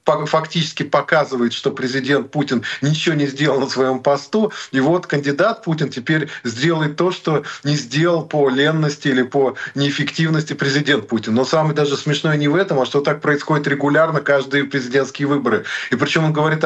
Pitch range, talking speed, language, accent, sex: 135-150 Hz, 170 wpm, Ukrainian, native, male